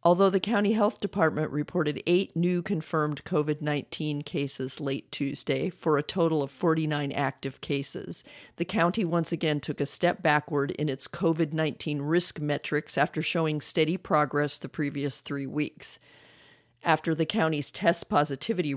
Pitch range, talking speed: 145-175 Hz, 155 wpm